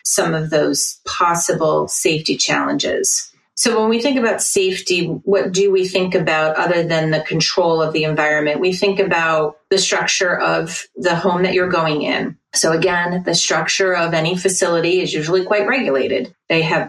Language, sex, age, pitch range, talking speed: English, female, 30-49, 160-195 Hz, 175 wpm